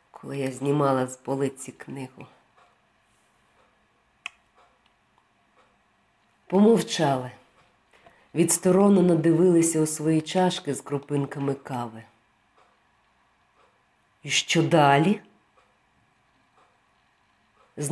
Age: 40-59